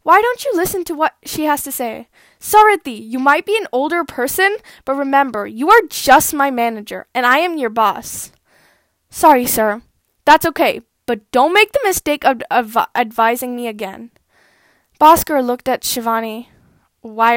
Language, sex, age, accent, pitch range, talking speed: English, female, 10-29, American, 245-320 Hz, 160 wpm